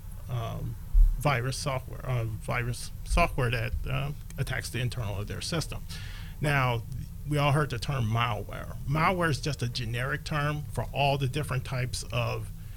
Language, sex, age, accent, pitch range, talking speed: English, male, 40-59, American, 110-130 Hz, 155 wpm